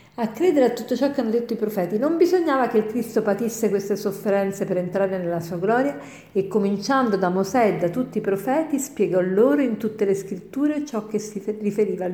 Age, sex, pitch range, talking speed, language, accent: 50-69, female, 195-250 Hz, 210 wpm, Italian, native